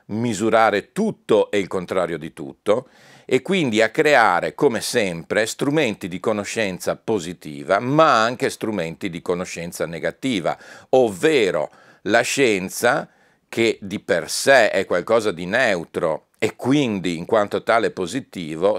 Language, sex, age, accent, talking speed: Italian, male, 40-59, native, 130 wpm